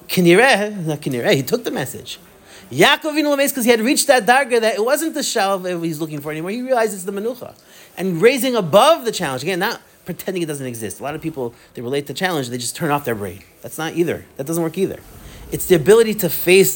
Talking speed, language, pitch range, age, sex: 235 wpm, English, 145-190 Hz, 30-49, male